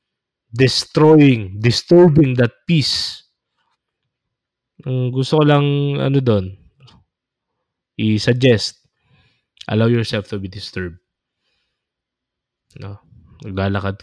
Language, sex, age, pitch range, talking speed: Filipino, male, 20-39, 100-135 Hz, 75 wpm